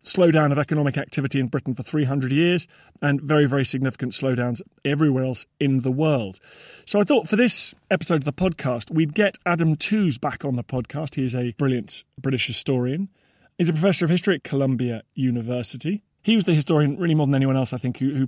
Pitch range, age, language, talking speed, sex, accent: 125-160 Hz, 30-49, English, 205 wpm, male, British